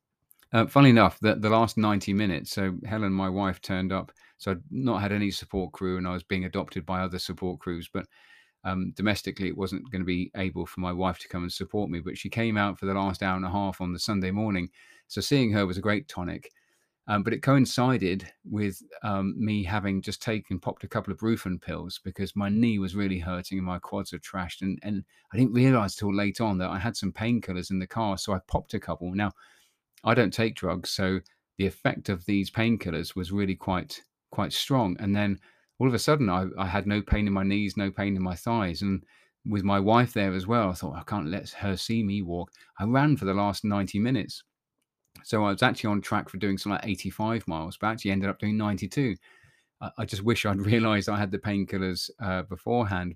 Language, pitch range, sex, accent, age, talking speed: English, 95-105 Hz, male, British, 30-49, 230 wpm